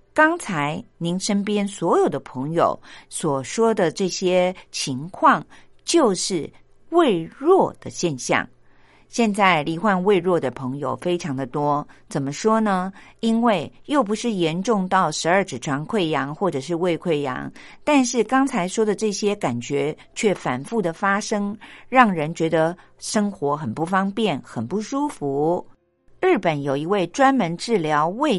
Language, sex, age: Chinese, female, 50-69